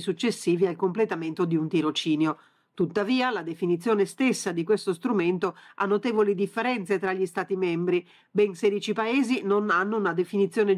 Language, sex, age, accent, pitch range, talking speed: Italian, female, 40-59, native, 190-235 Hz, 150 wpm